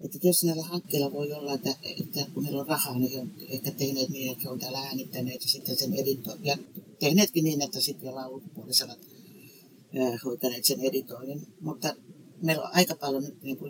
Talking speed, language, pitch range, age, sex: 180 wpm, Finnish, 135-170 Hz, 60-79, female